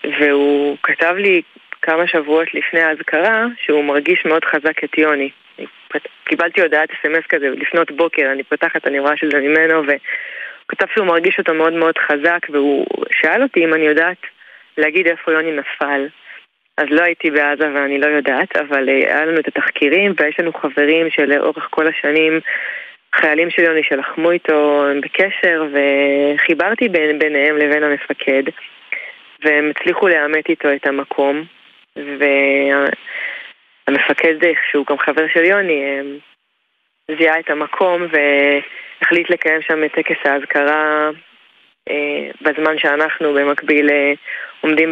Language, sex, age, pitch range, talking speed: Hebrew, female, 20-39, 145-165 Hz, 135 wpm